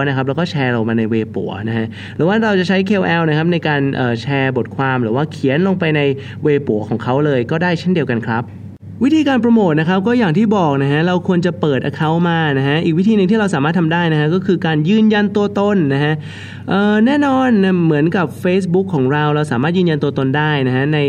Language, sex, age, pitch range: Thai, male, 20-39, 130-180 Hz